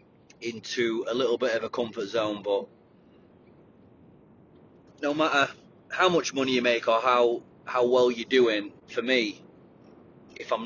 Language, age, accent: English, 30-49, British